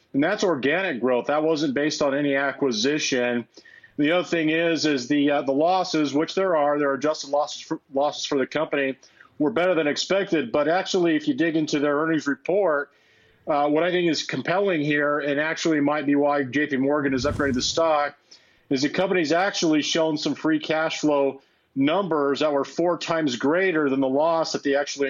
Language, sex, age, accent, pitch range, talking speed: English, male, 40-59, American, 140-160 Hz, 200 wpm